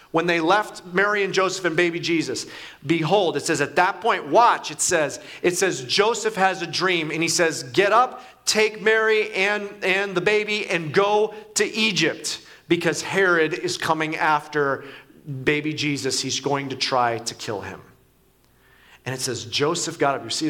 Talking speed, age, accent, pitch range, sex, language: 175 wpm, 30-49, American, 140-190 Hz, male, English